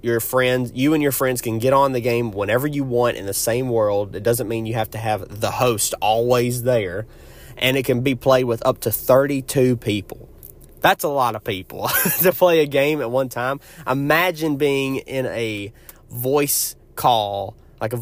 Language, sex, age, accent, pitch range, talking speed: English, male, 20-39, American, 110-135 Hz, 195 wpm